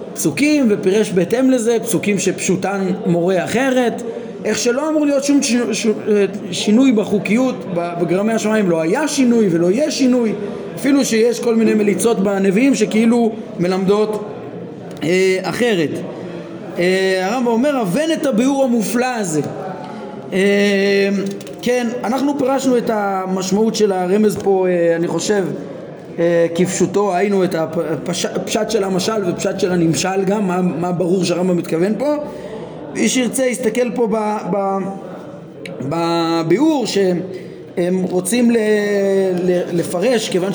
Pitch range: 185-240 Hz